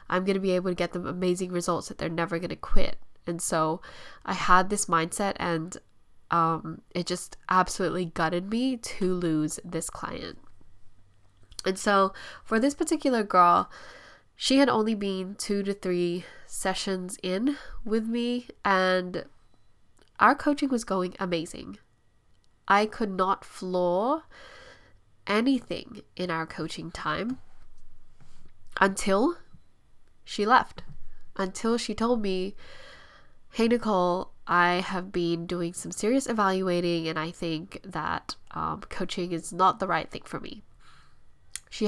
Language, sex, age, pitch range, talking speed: English, female, 10-29, 175-225 Hz, 135 wpm